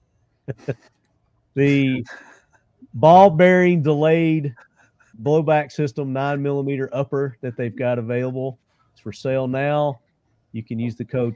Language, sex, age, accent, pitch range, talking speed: English, male, 40-59, American, 115-150 Hz, 115 wpm